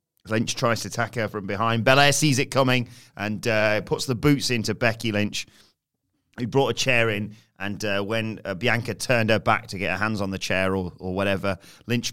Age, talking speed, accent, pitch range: 30-49, 215 wpm, British, 105-135 Hz